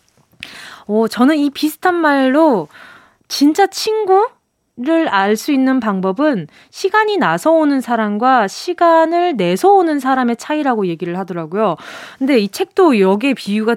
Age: 20-39